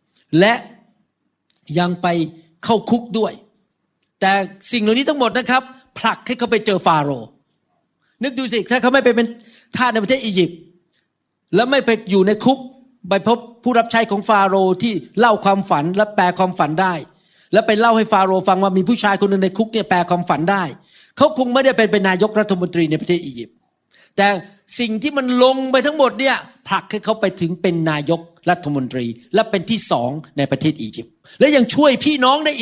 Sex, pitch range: male, 170-230 Hz